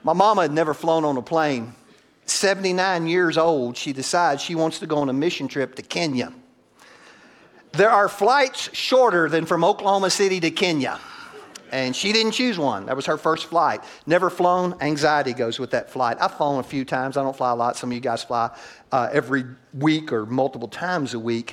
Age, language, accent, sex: 50-69, English, American, male